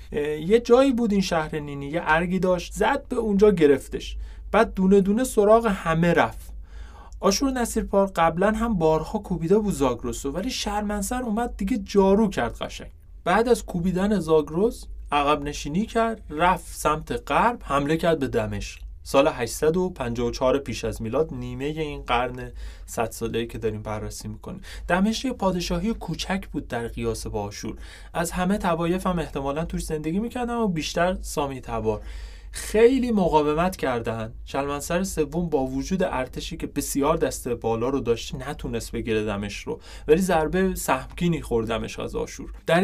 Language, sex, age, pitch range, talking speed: Persian, male, 30-49, 125-190 Hz, 150 wpm